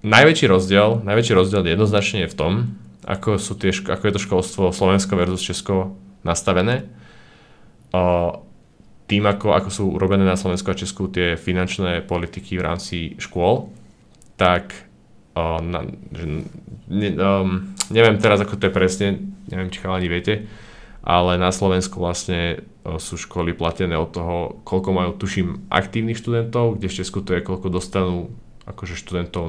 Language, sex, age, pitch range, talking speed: Slovak, male, 20-39, 90-105 Hz, 150 wpm